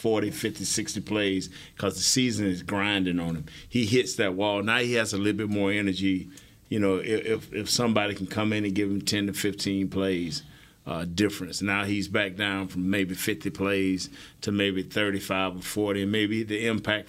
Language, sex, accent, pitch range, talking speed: English, male, American, 95-115 Hz, 200 wpm